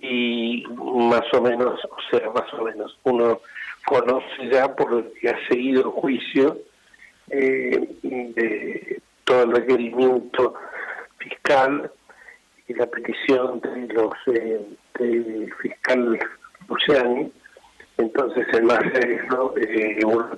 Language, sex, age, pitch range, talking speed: Spanish, male, 50-69, 110-130 Hz, 120 wpm